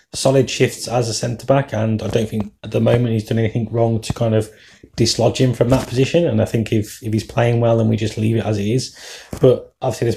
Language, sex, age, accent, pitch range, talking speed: English, male, 20-39, British, 110-125 Hz, 255 wpm